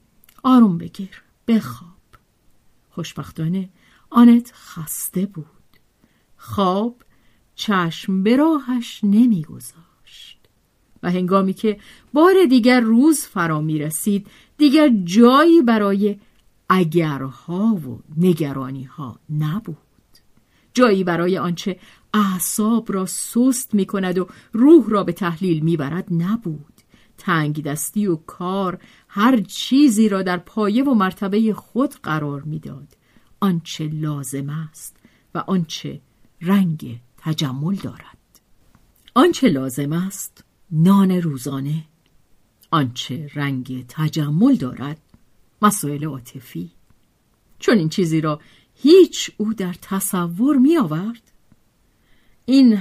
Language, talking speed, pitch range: Persian, 100 wpm, 155-230 Hz